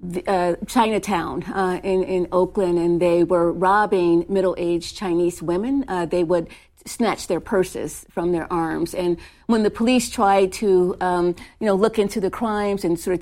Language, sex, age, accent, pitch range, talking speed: English, female, 50-69, American, 185-215 Hz, 175 wpm